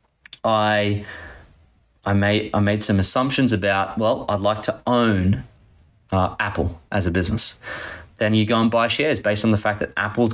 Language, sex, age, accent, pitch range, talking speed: English, male, 20-39, Australian, 105-125 Hz, 175 wpm